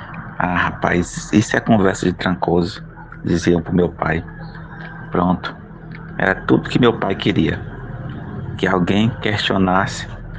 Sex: male